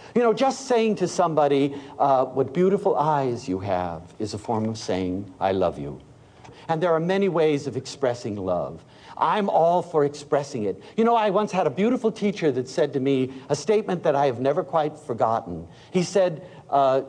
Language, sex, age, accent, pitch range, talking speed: English, male, 60-79, American, 130-200 Hz, 195 wpm